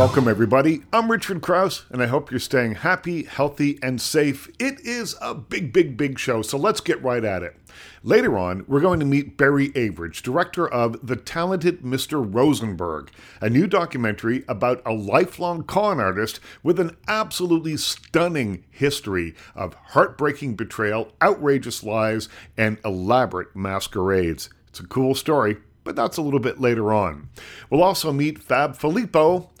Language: English